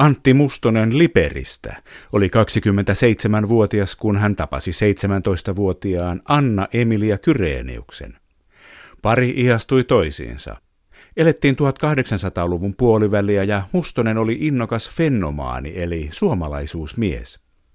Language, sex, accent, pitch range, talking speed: Finnish, male, native, 90-120 Hz, 85 wpm